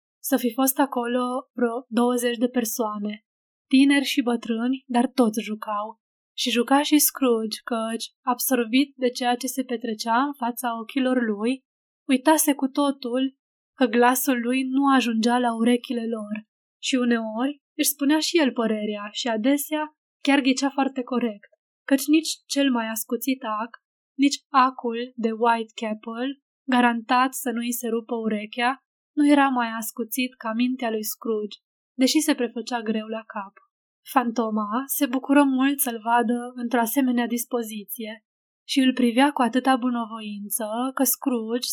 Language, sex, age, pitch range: Romanian, female, 10-29, 230-270 Hz